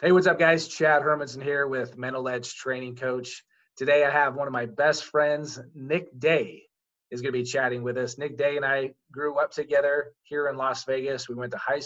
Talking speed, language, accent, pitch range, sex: 220 wpm, English, American, 130-155 Hz, male